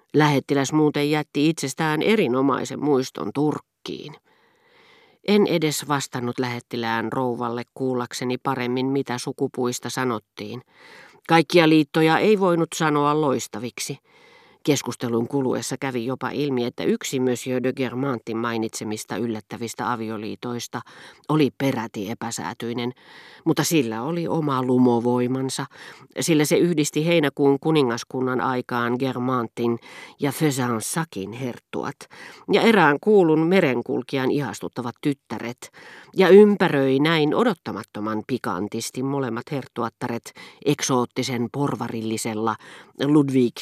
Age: 40-59